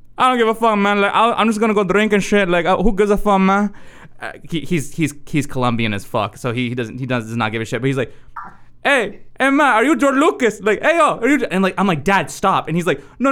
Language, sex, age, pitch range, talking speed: English, male, 20-39, 140-200 Hz, 300 wpm